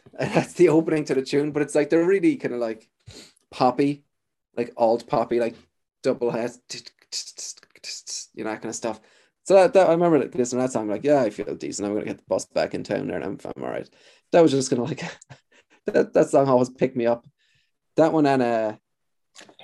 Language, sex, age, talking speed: English, male, 20-39, 230 wpm